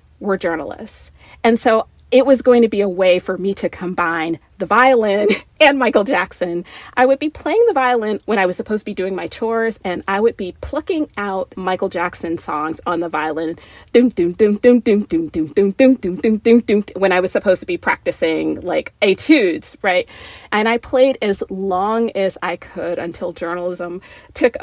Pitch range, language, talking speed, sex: 185-225 Hz, English, 165 wpm, female